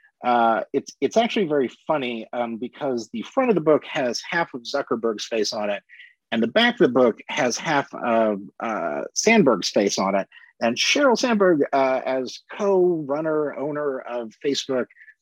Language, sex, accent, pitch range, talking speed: English, male, American, 125-175 Hz, 170 wpm